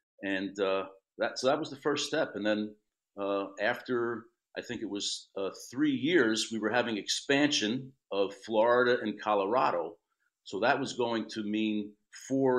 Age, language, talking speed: 50-69, English, 165 wpm